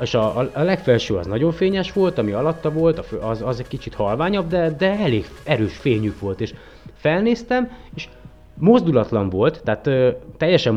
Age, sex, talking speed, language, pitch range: 30-49, male, 165 wpm, Hungarian, 105-155 Hz